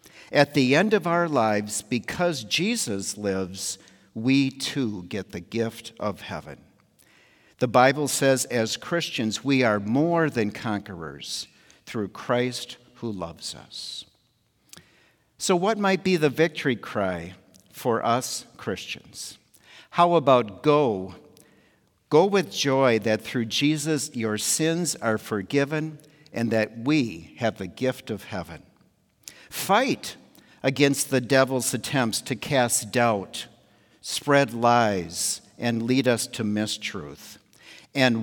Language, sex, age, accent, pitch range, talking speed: English, male, 60-79, American, 100-140 Hz, 120 wpm